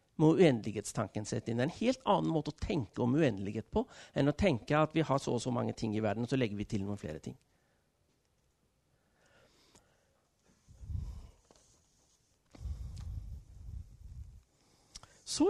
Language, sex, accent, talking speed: Danish, male, Swedish, 135 wpm